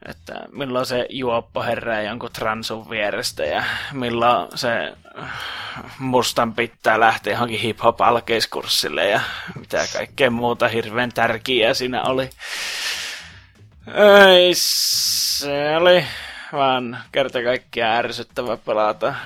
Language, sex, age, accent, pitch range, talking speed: Finnish, male, 20-39, native, 115-135 Hz, 100 wpm